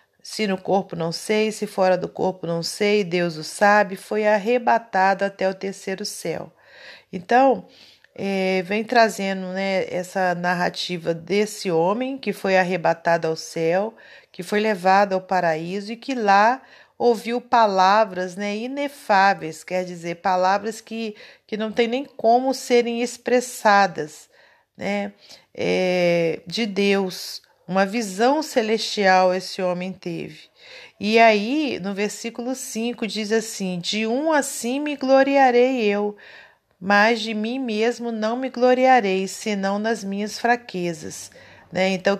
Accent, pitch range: Brazilian, 185-230 Hz